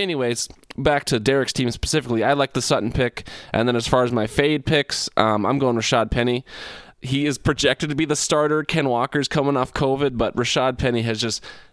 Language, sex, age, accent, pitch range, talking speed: English, male, 20-39, American, 110-135 Hz, 210 wpm